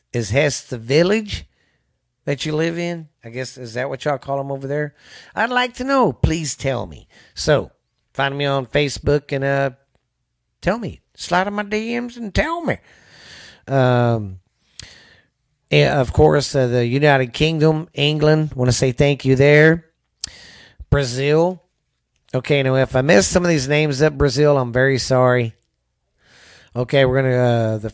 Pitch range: 120-155 Hz